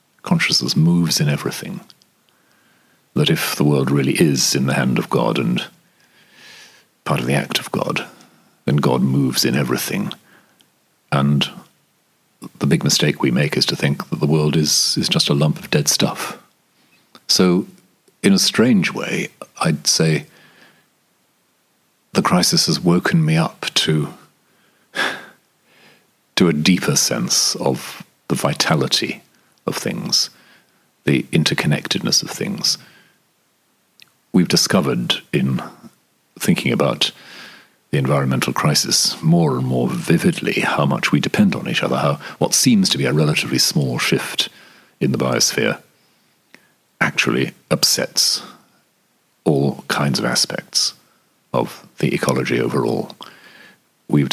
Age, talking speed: 40-59, 130 wpm